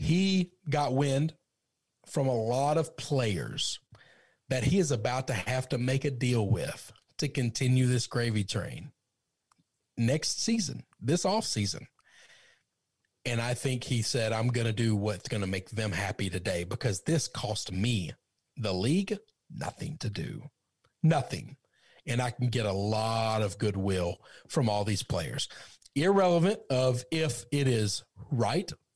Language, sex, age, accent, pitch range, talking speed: English, male, 40-59, American, 110-150 Hz, 150 wpm